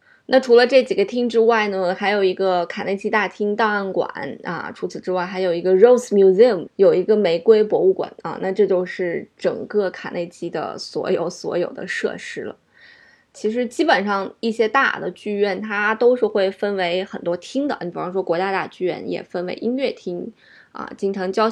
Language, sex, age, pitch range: Chinese, female, 20-39, 185-220 Hz